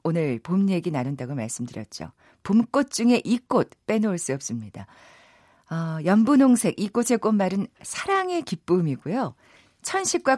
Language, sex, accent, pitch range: Korean, female, native, 165-255 Hz